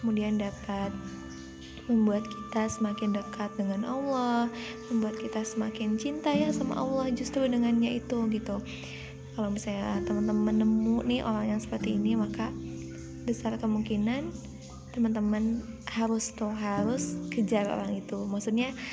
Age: 20-39